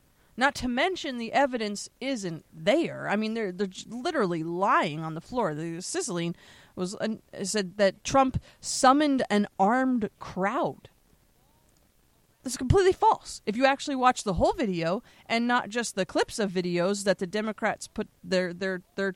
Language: English